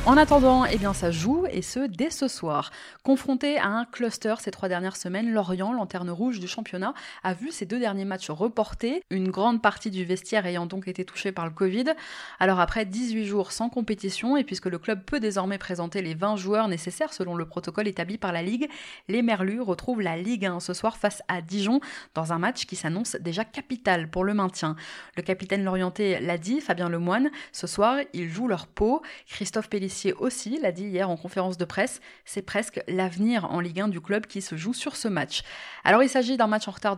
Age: 20-39